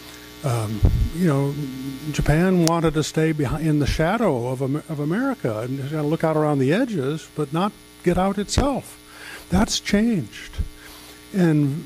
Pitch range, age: 105-160 Hz, 50-69